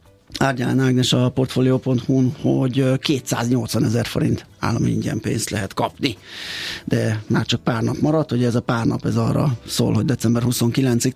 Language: Hungarian